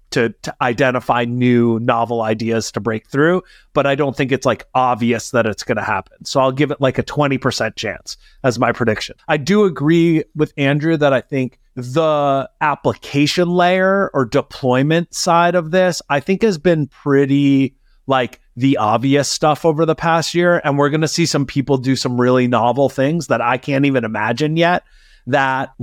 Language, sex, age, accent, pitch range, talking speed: English, male, 30-49, American, 125-170 Hz, 180 wpm